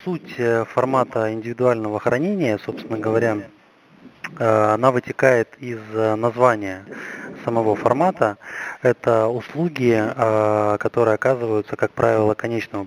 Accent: native